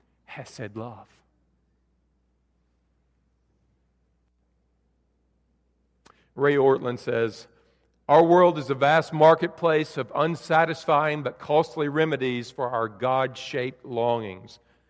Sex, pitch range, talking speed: male, 115-150 Hz, 90 wpm